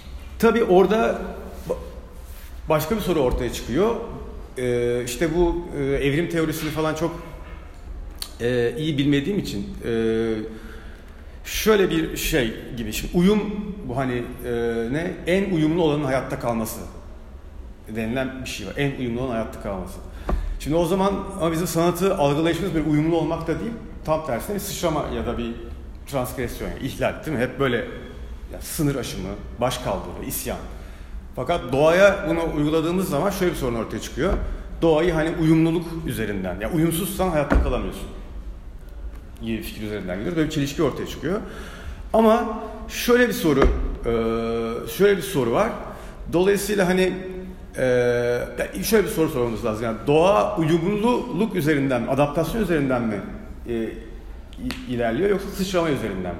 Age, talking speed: 40-59, 135 wpm